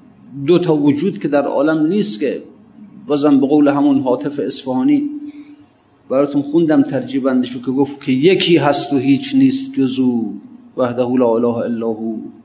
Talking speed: 140 wpm